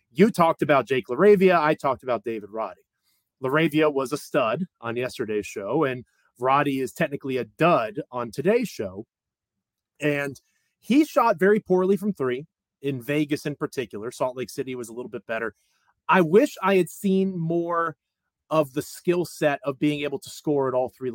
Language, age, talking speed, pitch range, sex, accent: English, 30-49, 180 wpm, 130-180 Hz, male, American